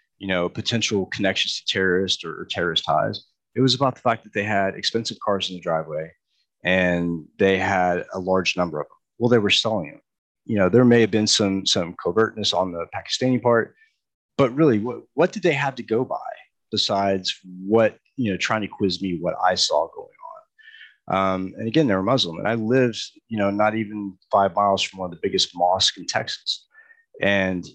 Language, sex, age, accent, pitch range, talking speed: English, male, 30-49, American, 95-130 Hz, 210 wpm